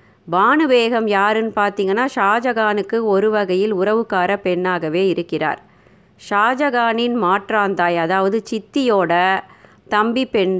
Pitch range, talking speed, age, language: 185-225 Hz, 85 wpm, 30-49, Tamil